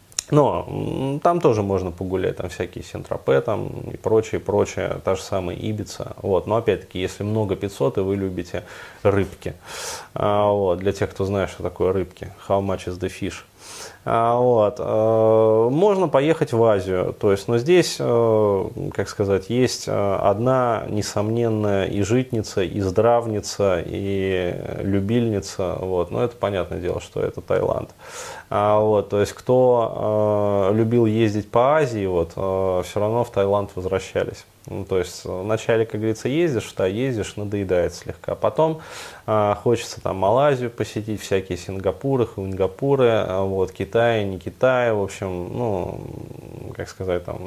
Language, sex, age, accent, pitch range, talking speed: Russian, male, 30-49, native, 95-115 Hz, 140 wpm